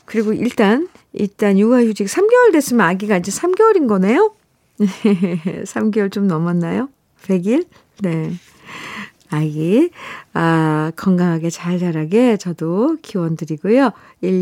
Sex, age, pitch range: female, 50-69, 175-245 Hz